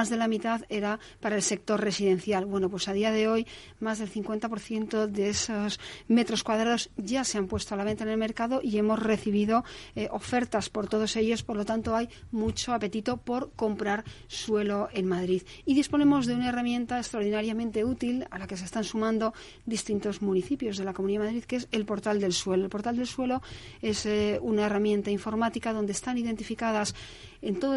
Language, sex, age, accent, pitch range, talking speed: Spanish, female, 40-59, Spanish, 210-235 Hz, 195 wpm